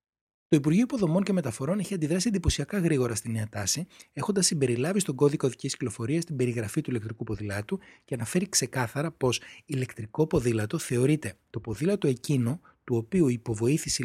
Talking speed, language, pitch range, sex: 155 wpm, Greek, 115-165 Hz, male